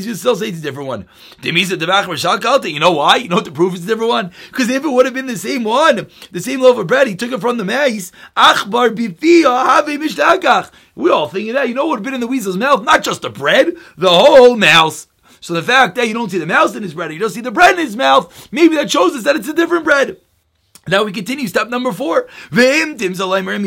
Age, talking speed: 30-49, 240 wpm